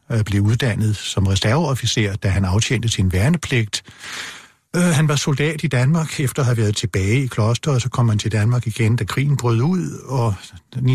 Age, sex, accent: 60-79, male, native